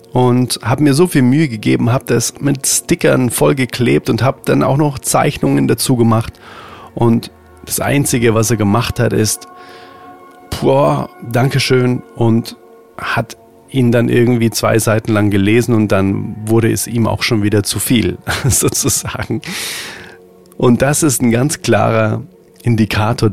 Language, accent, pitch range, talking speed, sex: German, German, 100-120 Hz, 150 wpm, male